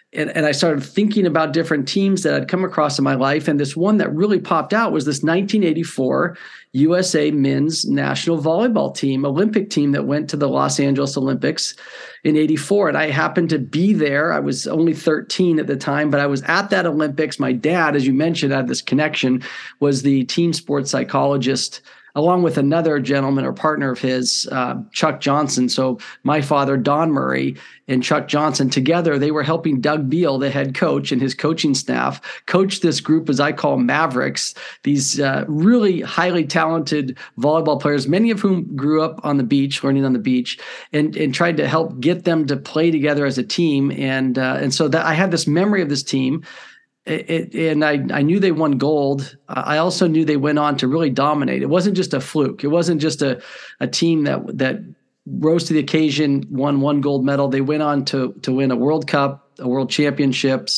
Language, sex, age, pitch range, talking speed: English, male, 40-59, 140-165 Hz, 205 wpm